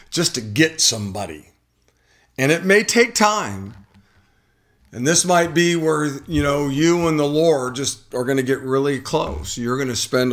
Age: 50-69